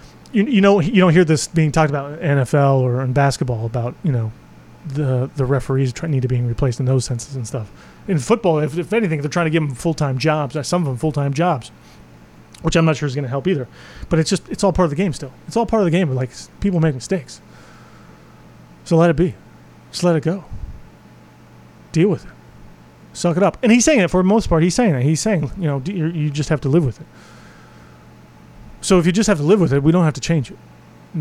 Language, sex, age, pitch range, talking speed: English, male, 30-49, 115-170 Hz, 250 wpm